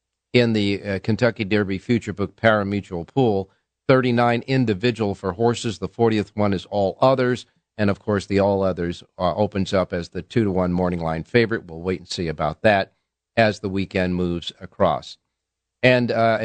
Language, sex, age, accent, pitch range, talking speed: English, male, 50-69, American, 95-125 Hz, 180 wpm